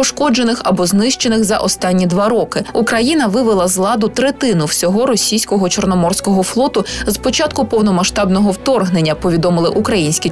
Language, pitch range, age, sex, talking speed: Ukrainian, 185-240 Hz, 20-39, female, 130 wpm